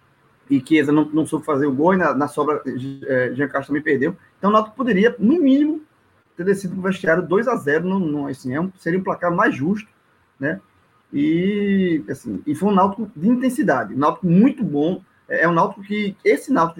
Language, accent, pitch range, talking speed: Portuguese, Brazilian, 155-215 Hz, 210 wpm